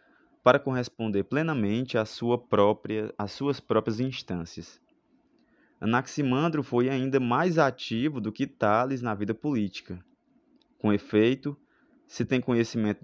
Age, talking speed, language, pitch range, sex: 20-39, 120 wpm, Portuguese, 105-140 Hz, male